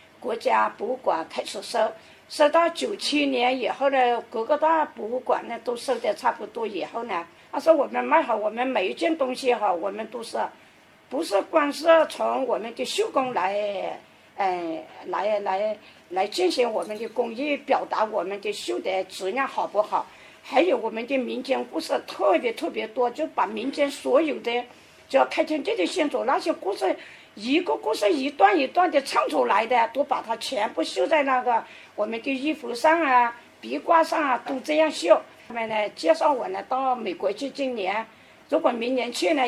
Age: 50-69